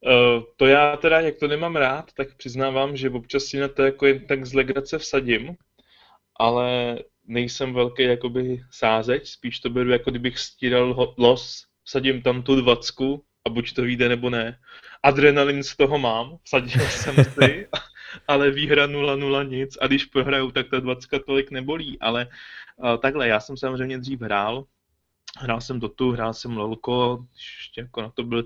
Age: 20-39